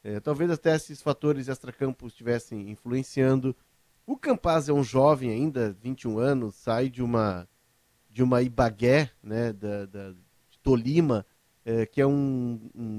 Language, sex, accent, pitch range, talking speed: Portuguese, male, Brazilian, 125-155 Hz, 150 wpm